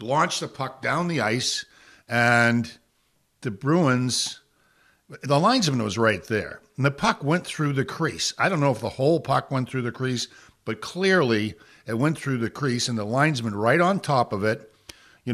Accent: American